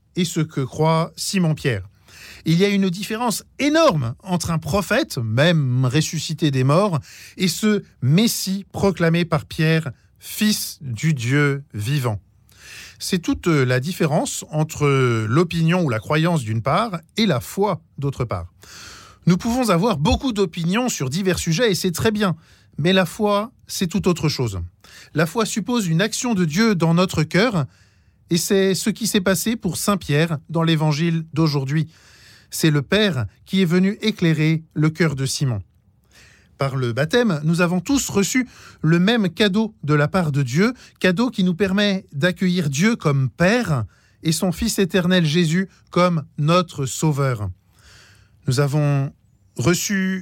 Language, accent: French, French